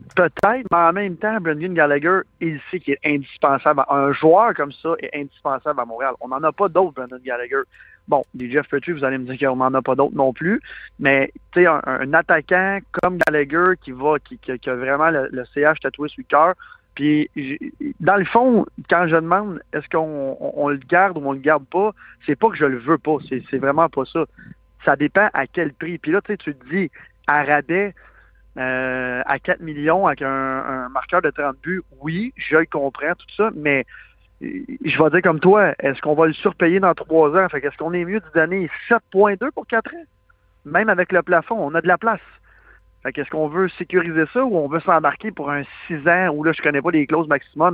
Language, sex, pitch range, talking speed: French, male, 140-185 Hz, 225 wpm